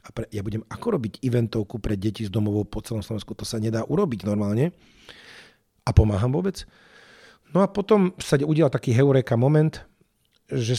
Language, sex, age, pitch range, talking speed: Slovak, male, 40-59, 105-125 Hz, 165 wpm